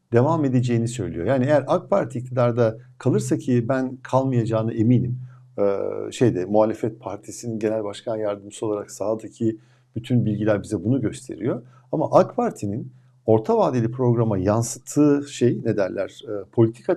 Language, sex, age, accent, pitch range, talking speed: Turkish, male, 50-69, native, 110-135 Hz, 140 wpm